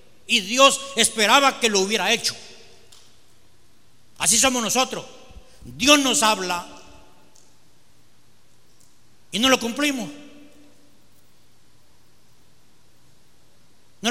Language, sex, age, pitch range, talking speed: Spanish, male, 60-79, 160-240 Hz, 75 wpm